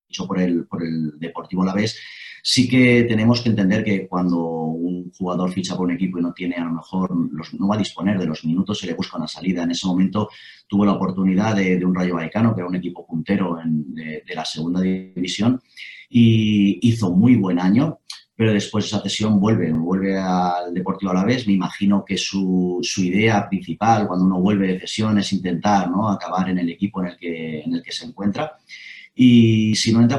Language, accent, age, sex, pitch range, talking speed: Spanish, Spanish, 30-49, male, 90-105 Hz, 215 wpm